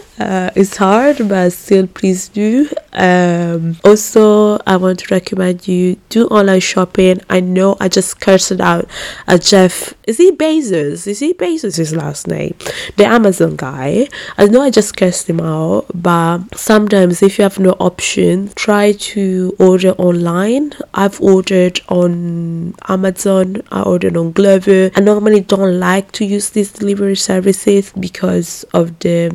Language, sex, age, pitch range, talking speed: English, female, 20-39, 180-205 Hz, 155 wpm